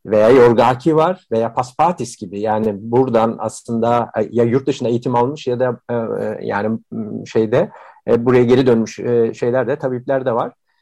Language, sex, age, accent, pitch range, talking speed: Turkish, male, 50-69, native, 120-150 Hz, 145 wpm